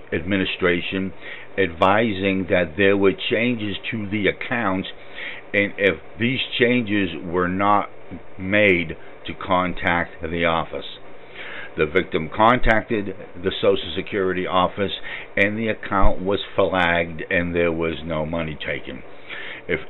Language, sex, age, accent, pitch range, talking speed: English, male, 60-79, American, 95-115 Hz, 120 wpm